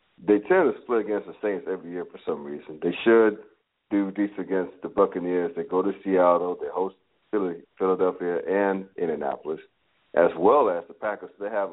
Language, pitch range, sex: English, 85-115 Hz, male